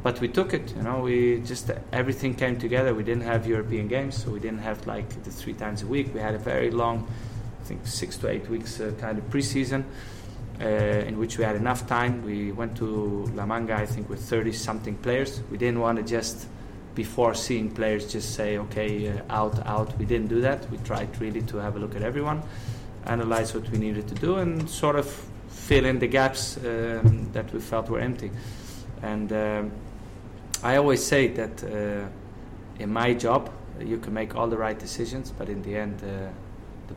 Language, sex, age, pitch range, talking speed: Hebrew, male, 20-39, 105-120 Hz, 210 wpm